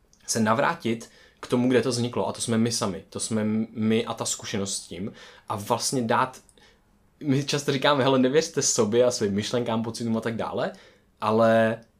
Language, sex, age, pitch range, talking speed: Czech, male, 20-39, 105-125 Hz, 190 wpm